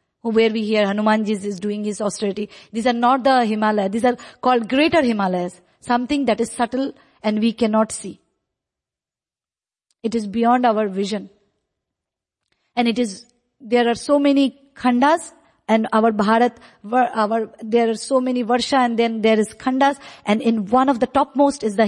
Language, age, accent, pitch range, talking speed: English, 50-69, Indian, 210-255 Hz, 165 wpm